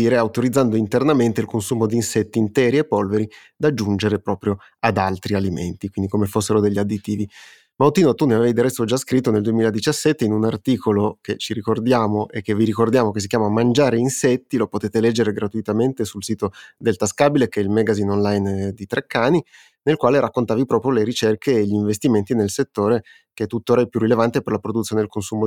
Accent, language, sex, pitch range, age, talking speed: native, Italian, male, 105-115 Hz, 30-49, 195 wpm